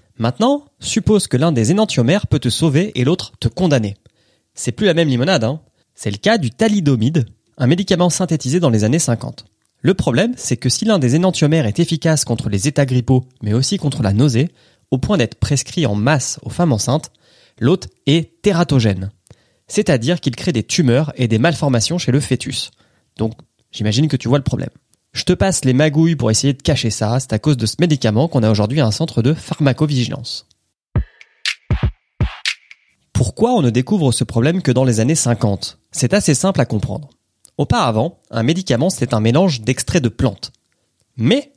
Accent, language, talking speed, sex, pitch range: French, French, 185 wpm, male, 115-160 Hz